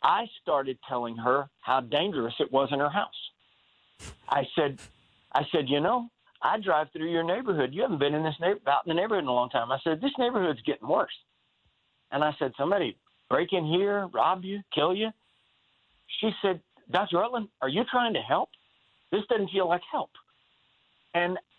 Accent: American